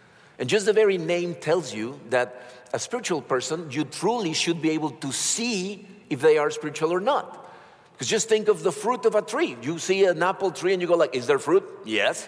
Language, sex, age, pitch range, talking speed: English, male, 50-69, 140-210 Hz, 225 wpm